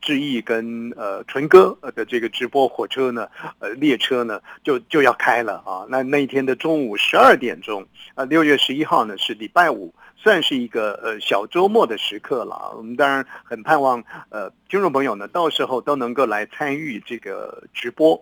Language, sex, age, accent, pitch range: Chinese, male, 50-69, native, 130-210 Hz